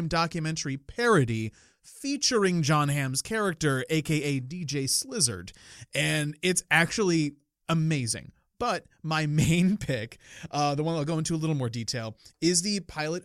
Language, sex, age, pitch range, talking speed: English, male, 30-49, 125-155 Hz, 135 wpm